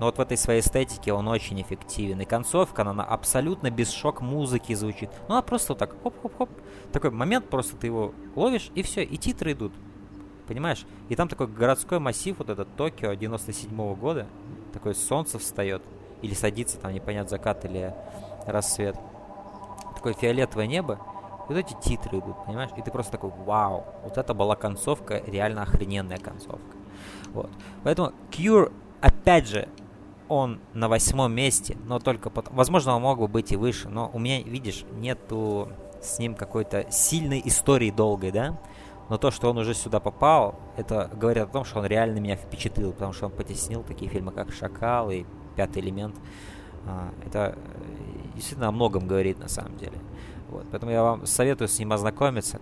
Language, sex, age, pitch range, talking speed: Russian, male, 20-39, 100-125 Hz, 170 wpm